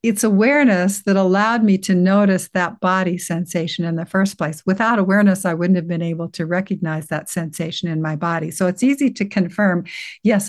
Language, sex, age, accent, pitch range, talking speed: Dutch, female, 60-79, American, 175-215 Hz, 195 wpm